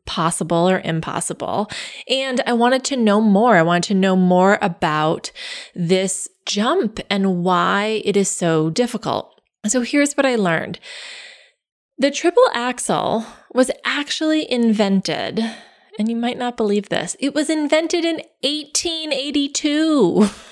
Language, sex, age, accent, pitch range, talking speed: English, female, 20-39, American, 200-300 Hz, 130 wpm